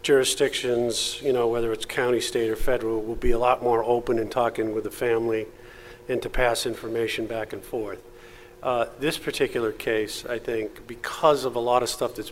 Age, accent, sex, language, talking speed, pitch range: 50-69, American, male, English, 195 wpm, 115-130 Hz